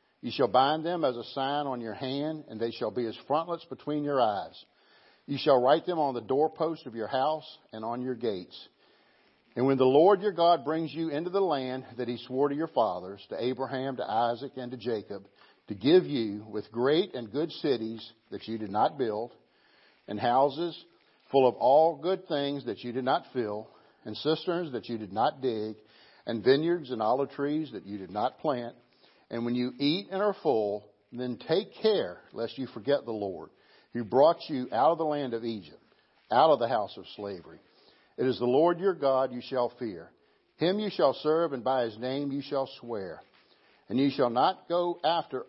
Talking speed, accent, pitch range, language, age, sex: 205 wpm, American, 120-150 Hz, English, 50-69, male